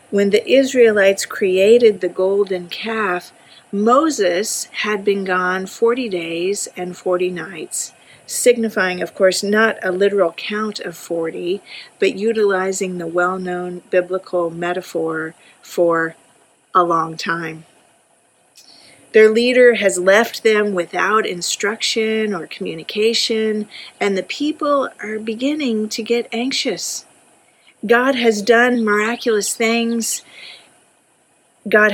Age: 40-59